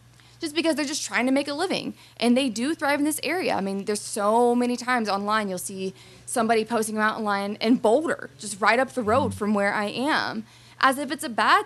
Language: English